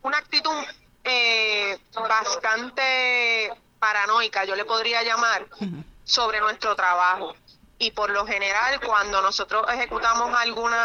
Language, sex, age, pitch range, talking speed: Spanish, female, 30-49, 205-245 Hz, 110 wpm